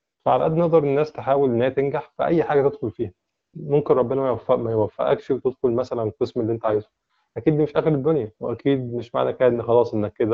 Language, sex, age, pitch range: Arabic, male, 20-39, 110-135 Hz